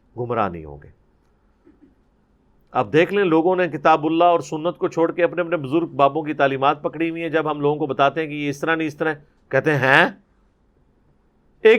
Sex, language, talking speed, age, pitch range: male, Urdu, 215 wpm, 50-69, 150-215 Hz